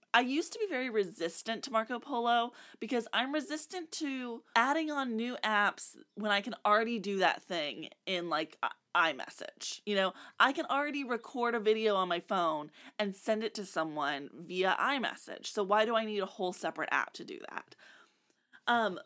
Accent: American